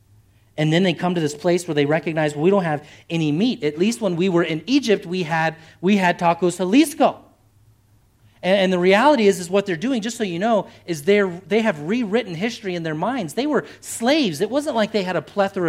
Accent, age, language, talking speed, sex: American, 40-59, English, 230 wpm, male